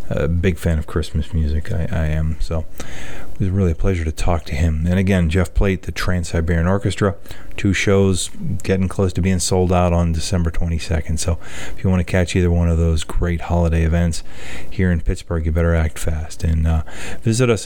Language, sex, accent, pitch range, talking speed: English, male, American, 80-95 Hz, 205 wpm